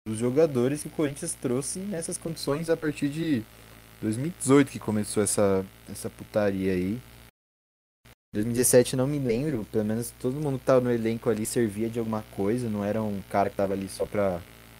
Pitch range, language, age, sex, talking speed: 95-125 Hz, Portuguese, 20-39, male, 180 wpm